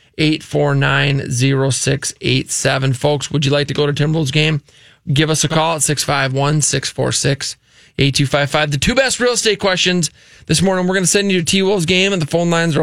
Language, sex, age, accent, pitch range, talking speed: English, male, 20-39, American, 135-165 Hz, 205 wpm